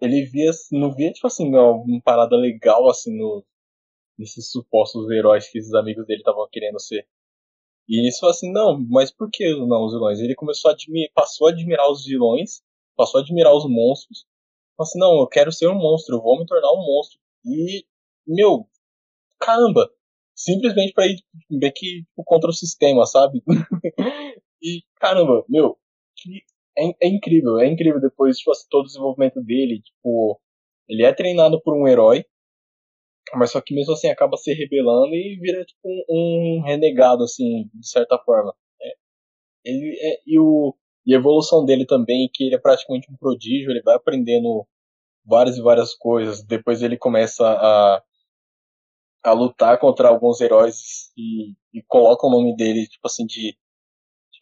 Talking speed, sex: 165 wpm, male